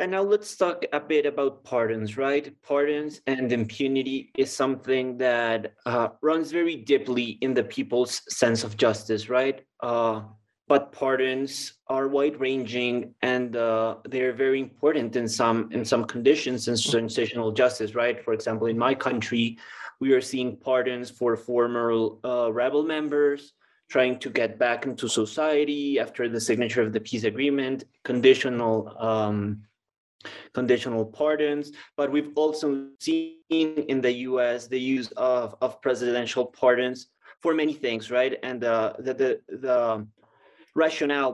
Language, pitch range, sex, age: English, 120-140 Hz, male, 20-39